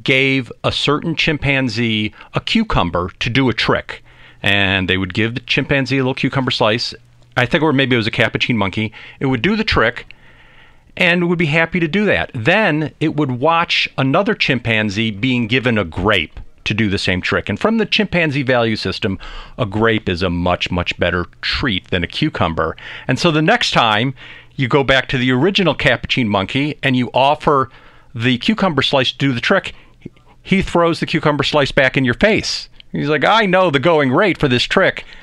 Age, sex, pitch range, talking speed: 50-69, male, 110-150 Hz, 195 wpm